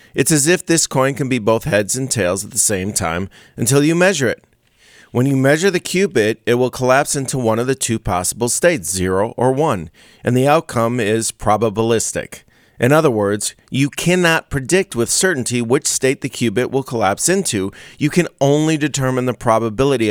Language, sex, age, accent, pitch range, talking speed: English, male, 40-59, American, 105-145 Hz, 190 wpm